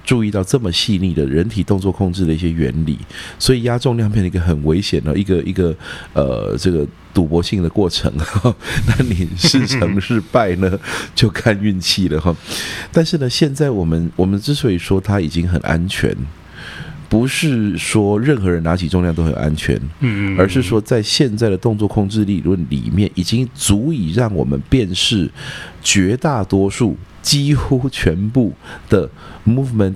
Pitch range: 85-110 Hz